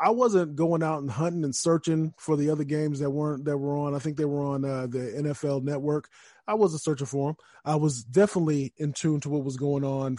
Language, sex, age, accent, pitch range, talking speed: English, male, 20-39, American, 140-170 Hz, 240 wpm